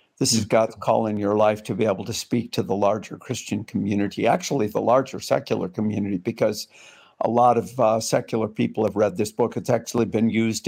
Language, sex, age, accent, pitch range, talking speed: English, male, 50-69, American, 110-135 Hz, 210 wpm